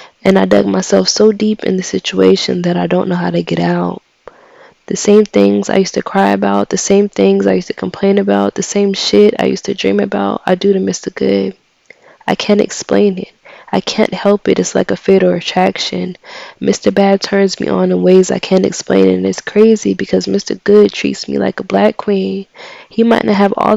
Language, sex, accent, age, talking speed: English, female, American, 20-39, 220 wpm